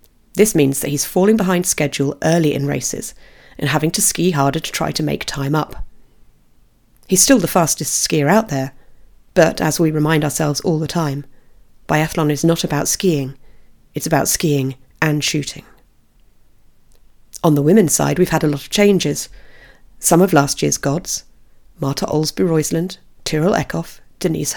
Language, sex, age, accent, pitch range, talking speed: English, female, 40-59, British, 145-180 Hz, 165 wpm